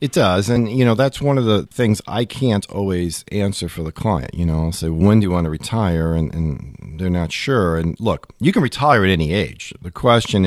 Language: English